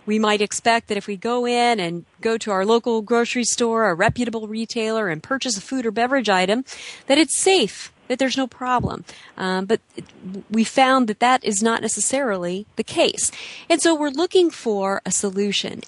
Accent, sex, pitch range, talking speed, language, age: American, female, 200-255 Hz, 190 wpm, English, 40-59